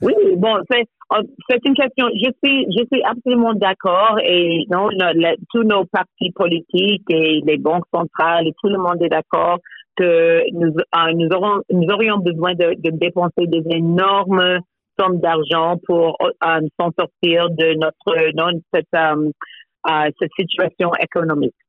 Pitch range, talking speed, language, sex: 160-185 Hz, 160 wpm, French, female